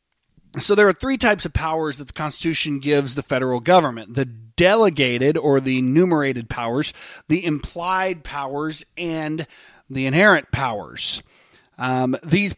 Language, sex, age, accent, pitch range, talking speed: English, male, 30-49, American, 145-185 Hz, 140 wpm